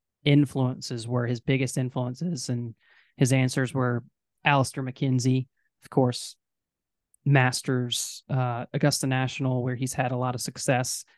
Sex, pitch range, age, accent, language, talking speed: male, 125-145 Hz, 20-39, American, English, 130 wpm